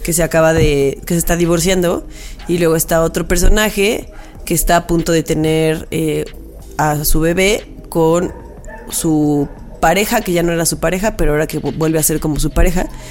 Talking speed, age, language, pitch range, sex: 190 wpm, 20-39, Spanish, 155-175 Hz, female